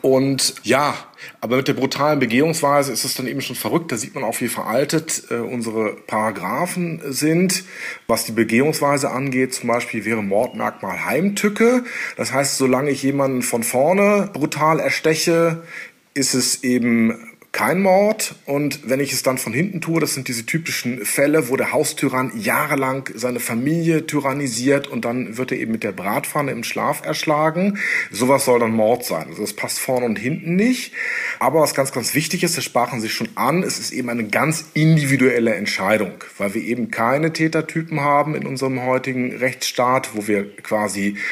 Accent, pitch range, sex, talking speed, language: German, 125-160 Hz, male, 175 wpm, German